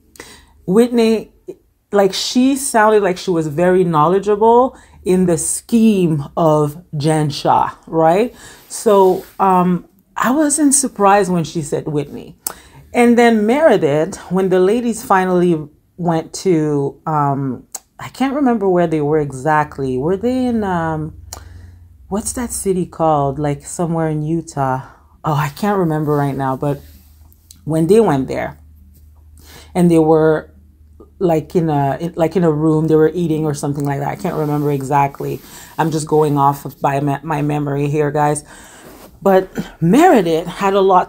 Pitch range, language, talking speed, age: 145-190 Hz, English, 145 wpm, 30-49